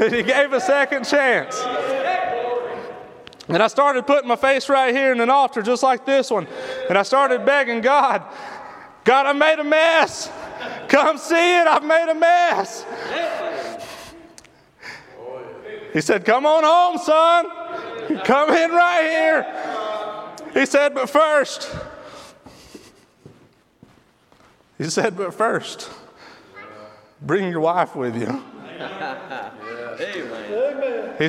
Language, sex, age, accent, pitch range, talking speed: English, male, 30-49, American, 210-300 Hz, 120 wpm